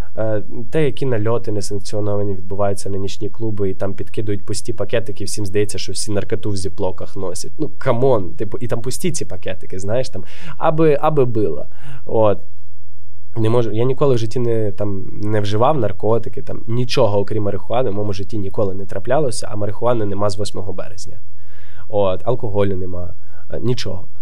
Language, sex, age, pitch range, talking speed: Russian, male, 20-39, 95-125 Hz, 155 wpm